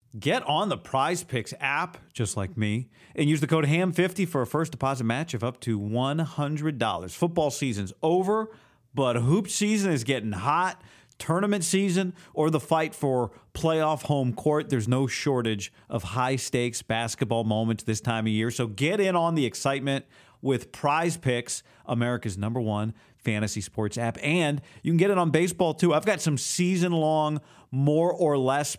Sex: male